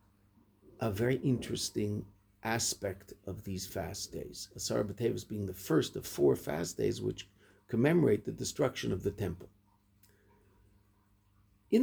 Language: English